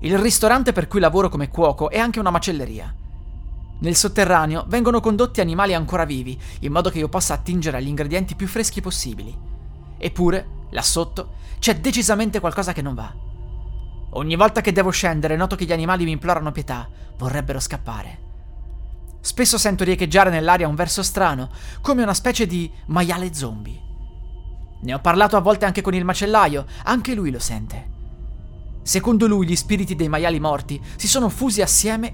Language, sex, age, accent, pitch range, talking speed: Italian, male, 30-49, native, 125-190 Hz, 165 wpm